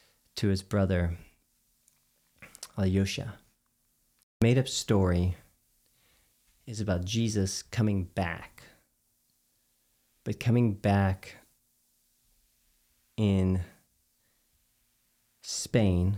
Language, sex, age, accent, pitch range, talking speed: English, male, 30-49, American, 95-120 Hz, 60 wpm